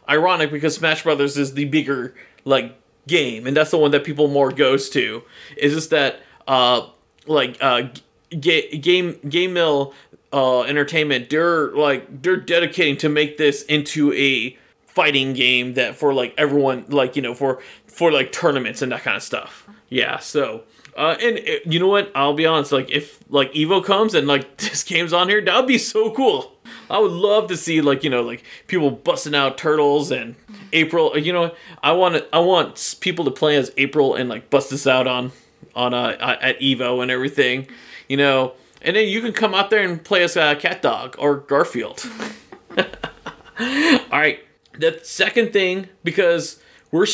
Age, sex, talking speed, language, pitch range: 30-49, male, 185 wpm, English, 140-185 Hz